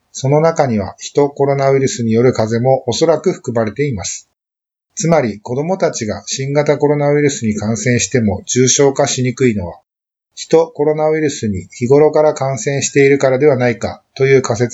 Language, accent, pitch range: Japanese, native, 115-145 Hz